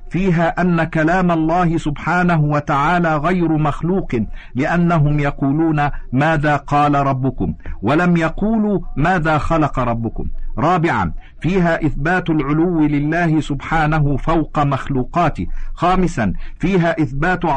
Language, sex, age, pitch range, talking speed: Arabic, male, 50-69, 150-175 Hz, 100 wpm